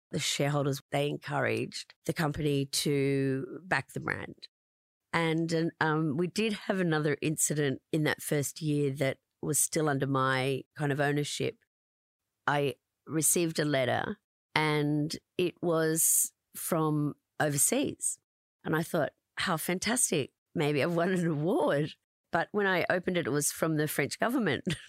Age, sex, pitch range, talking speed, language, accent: 40-59, female, 140-165 Hz, 140 wpm, English, Australian